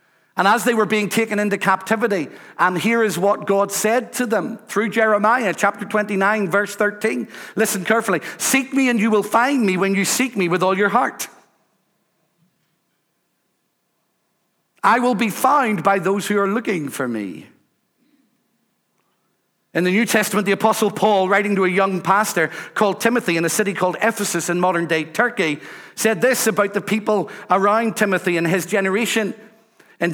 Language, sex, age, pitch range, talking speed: English, male, 60-79, 175-215 Hz, 165 wpm